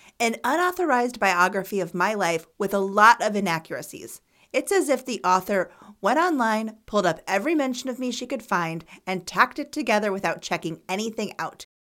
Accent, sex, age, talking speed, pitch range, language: American, female, 30-49, 175 wpm, 180-280 Hz, English